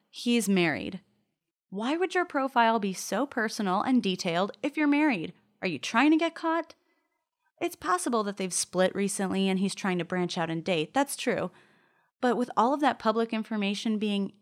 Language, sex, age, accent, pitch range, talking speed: English, female, 30-49, American, 185-240 Hz, 185 wpm